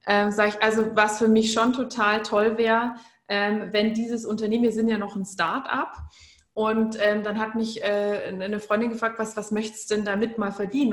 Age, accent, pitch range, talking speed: 20-39, German, 205-250 Hz, 210 wpm